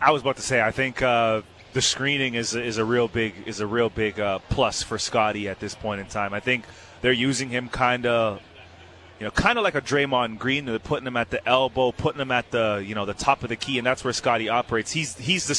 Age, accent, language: 20-39, American, English